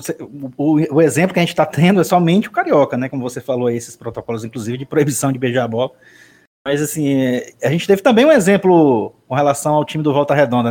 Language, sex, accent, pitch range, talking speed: Portuguese, male, Brazilian, 135-190 Hz, 225 wpm